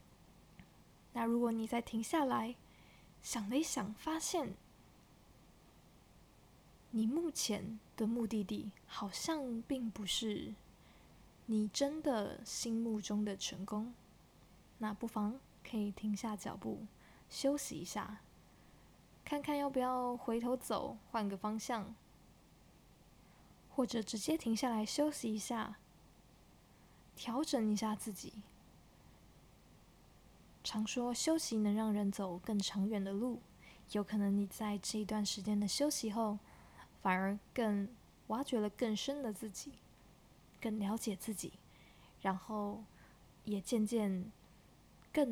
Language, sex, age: Chinese, female, 20-39